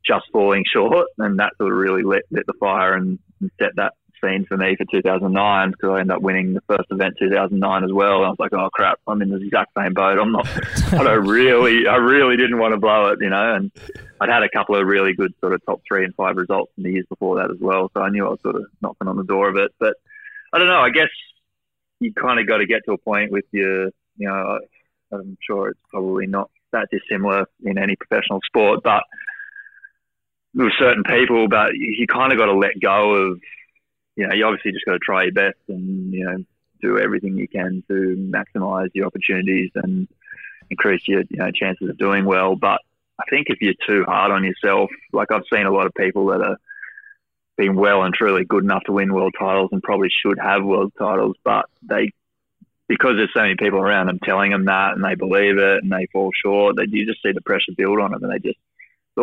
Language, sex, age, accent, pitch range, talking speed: English, male, 20-39, Australian, 95-120 Hz, 235 wpm